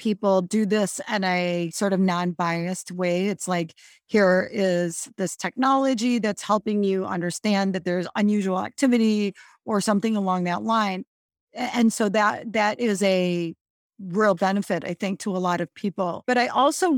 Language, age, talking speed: English, 40-59, 165 wpm